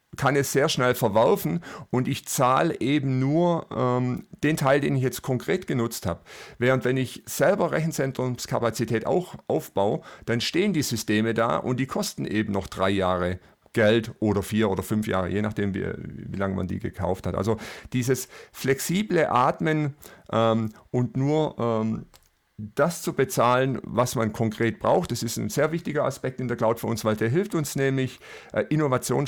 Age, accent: 50-69, German